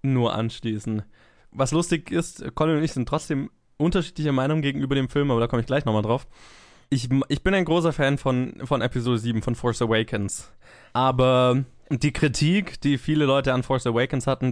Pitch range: 115-135 Hz